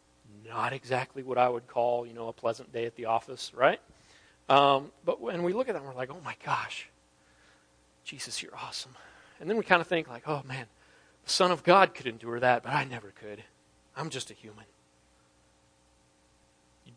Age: 40-59